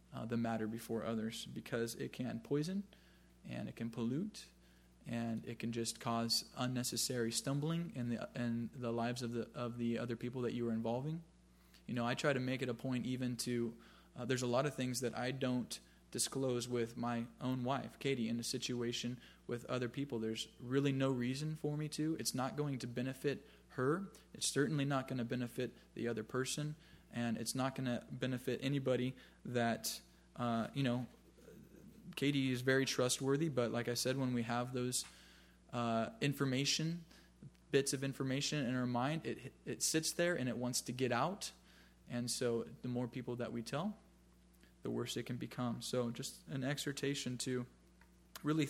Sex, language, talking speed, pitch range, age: male, English, 185 wpm, 115-135 Hz, 20-39